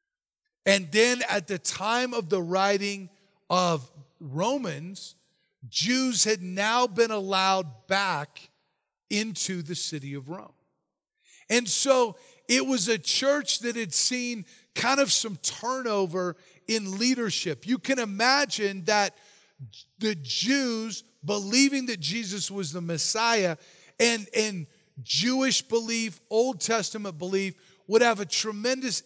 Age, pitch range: 40-59, 170-230 Hz